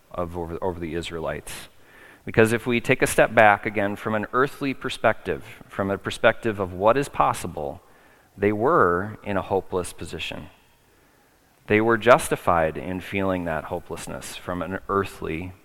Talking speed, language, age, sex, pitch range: 150 wpm, English, 30-49, male, 90-105 Hz